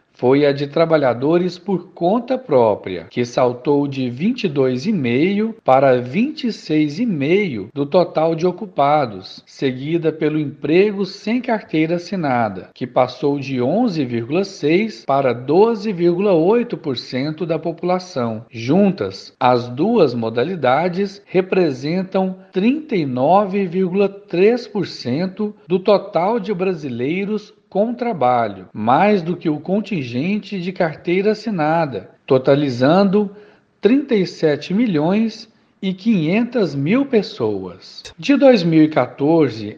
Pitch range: 135-200 Hz